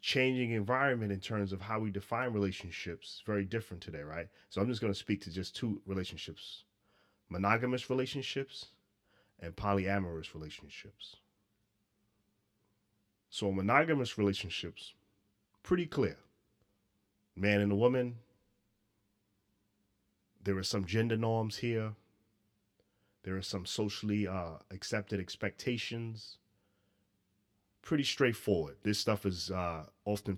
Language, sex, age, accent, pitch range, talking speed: English, male, 30-49, American, 95-105 Hz, 115 wpm